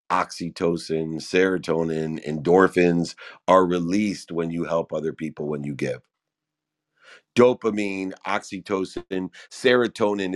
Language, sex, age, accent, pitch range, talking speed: English, male, 50-69, American, 85-110 Hz, 95 wpm